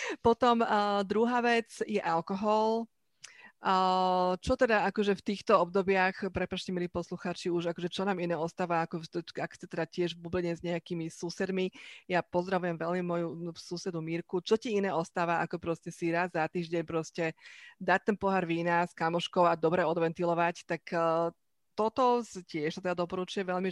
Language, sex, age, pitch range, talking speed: Slovak, female, 30-49, 170-205 Hz, 165 wpm